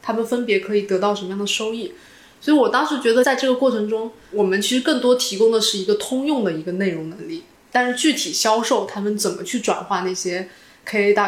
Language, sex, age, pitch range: Chinese, female, 20-39, 190-230 Hz